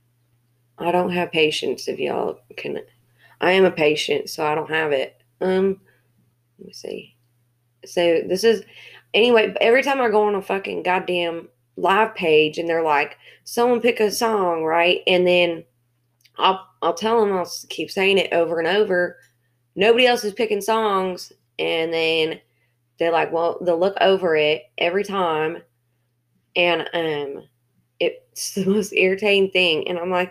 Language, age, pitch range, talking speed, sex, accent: English, 20-39, 120-195 Hz, 160 wpm, female, American